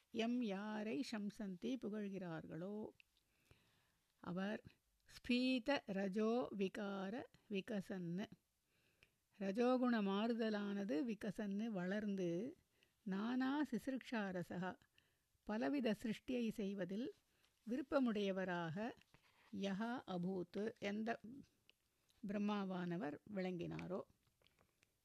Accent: native